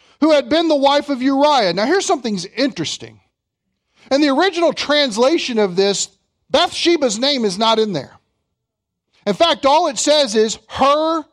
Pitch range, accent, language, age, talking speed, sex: 170-260 Hz, American, English, 50-69, 160 wpm, male